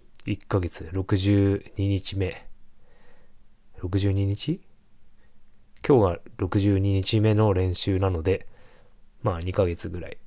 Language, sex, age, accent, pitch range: Japanese, male, 20-39, native, 90-110 Hz